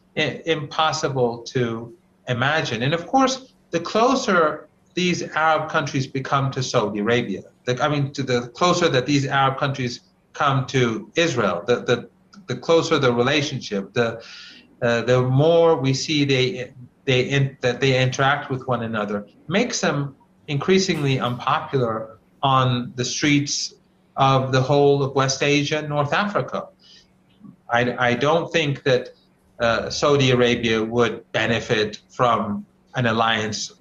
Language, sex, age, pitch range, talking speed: English, male, 40-59, 120-155 Hz, 140 wpm